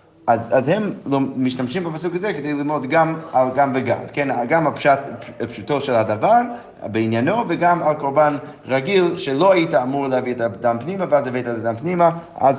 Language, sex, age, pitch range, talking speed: Hebrew, male, 30-49, 130-170 Hz, 170 wpm